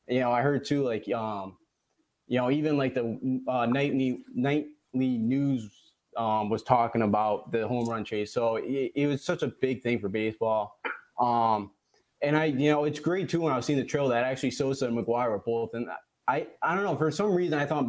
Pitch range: 115-140 Hz